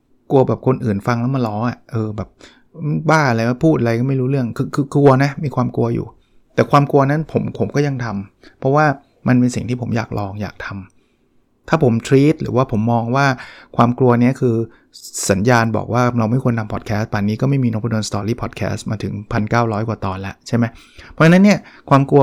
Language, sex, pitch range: English, male, 110-135 Hz